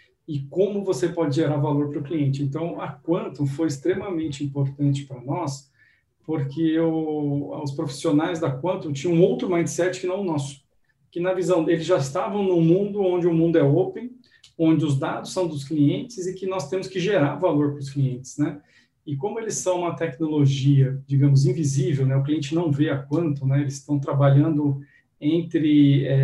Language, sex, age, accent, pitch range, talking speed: Portuguese, male, 40-59, Brazilian, 140-170 Hz, 180 wpm